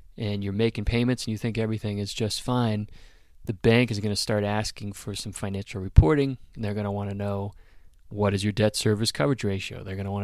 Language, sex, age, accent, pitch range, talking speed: English, male, 30-49, American, 100-115 Hz, 235 wpm